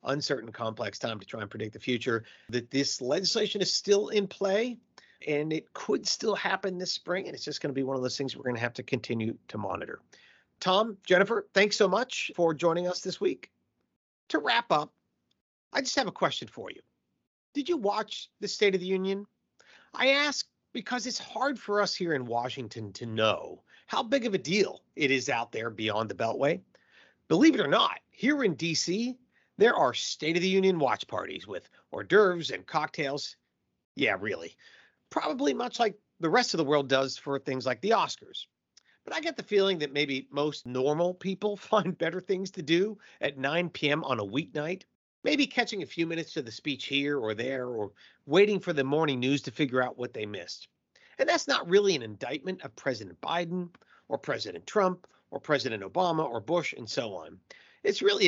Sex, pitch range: male, 135-205 Hz